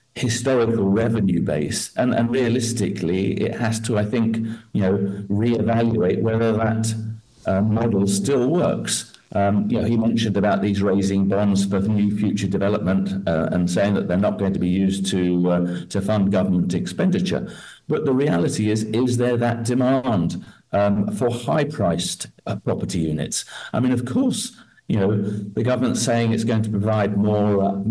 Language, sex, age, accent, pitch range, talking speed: English, male, 50-69, British, 100-115 Hz, 170 wpm